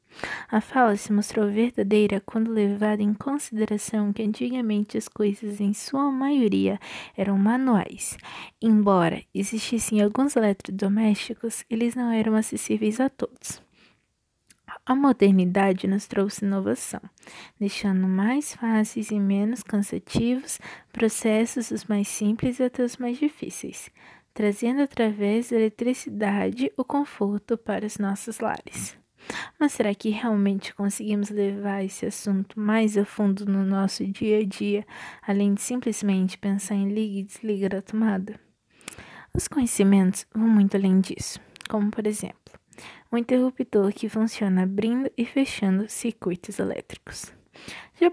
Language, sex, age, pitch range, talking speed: Portuguese, female, 20-39, 200-235 Hz, 125 wpm